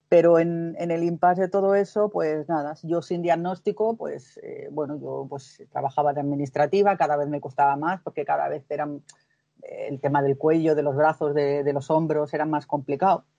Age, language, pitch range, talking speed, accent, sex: 40-59, Spanish, 150-175 Hz, 200 wpm, Spanish, female